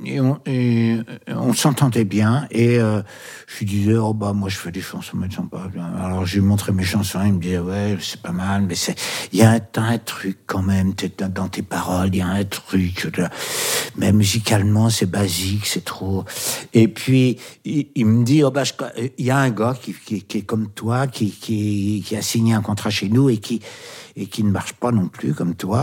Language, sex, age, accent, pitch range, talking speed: French, male, 60-79, French, 100-120 Hz, 230 wpm